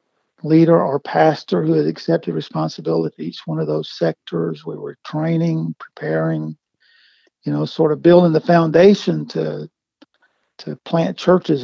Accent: American